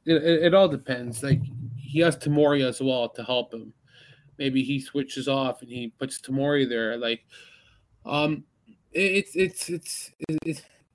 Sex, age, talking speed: male, 20-39, 155 wpm